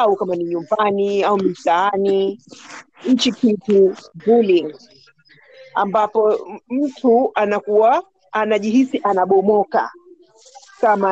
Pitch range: 195-260 Hz